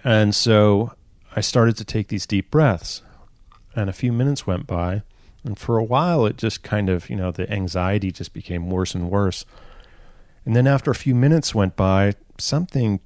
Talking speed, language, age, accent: 190 wpm, English, 40-59, American